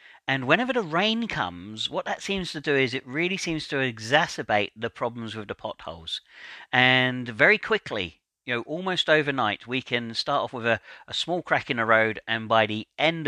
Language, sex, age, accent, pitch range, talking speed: English, male, 40-59, British, 115-150 Hz, 200 wpm